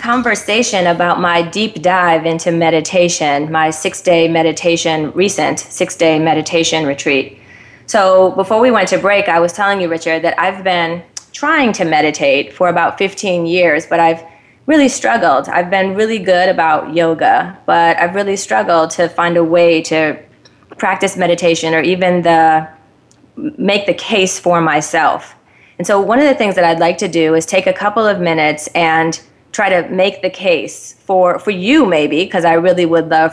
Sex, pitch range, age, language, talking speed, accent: female, 165-195 Hz, 30-49, English, 175 wpm, American